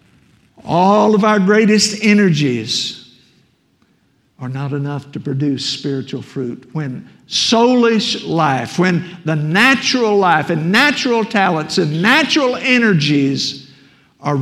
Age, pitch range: 60-79, 140-190 Hz